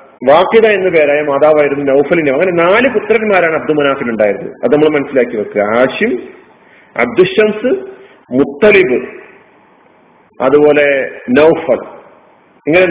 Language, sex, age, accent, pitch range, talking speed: Malayalam, male, 40-59, native, 145-225 Hz, 100 wpm